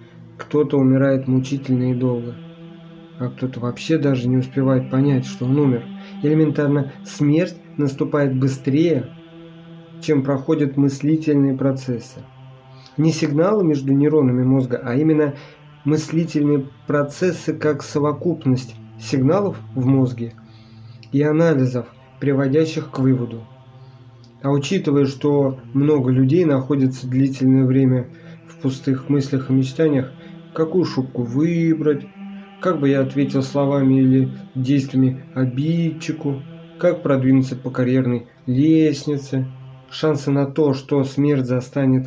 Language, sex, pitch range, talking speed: Russian, male, 130-150 Hz, 110 wpm